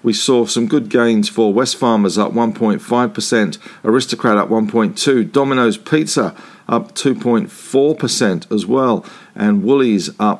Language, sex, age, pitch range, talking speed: English, male, 50-69, 110-135 Hz, 125 wpm